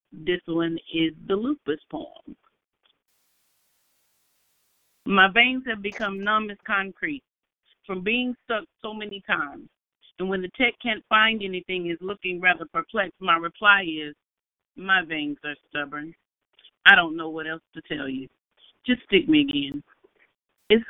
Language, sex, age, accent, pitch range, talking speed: English, female, 40-59, American, 160-220 Hz, 145 wpm